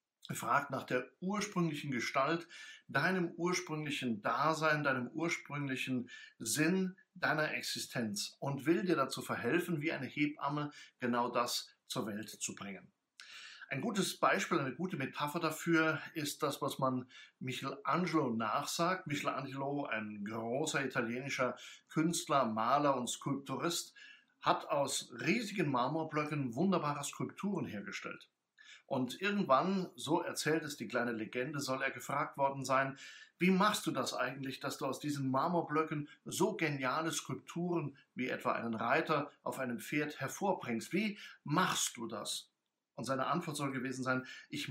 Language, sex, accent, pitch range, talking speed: German, male, German, 130-170 Hz, 135 wpm